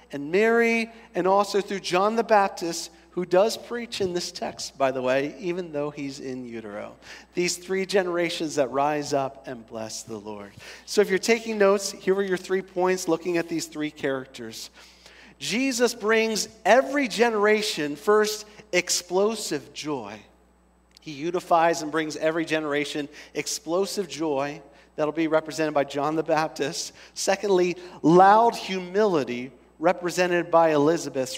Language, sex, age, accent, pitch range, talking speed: English, male, 40-59, American, 140-190 Hz, 145 wpm